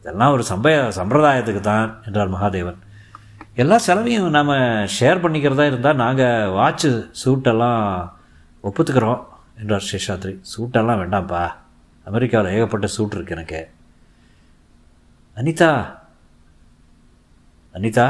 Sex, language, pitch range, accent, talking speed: male, Tamil, 100-125 Hz, native, 95 wpm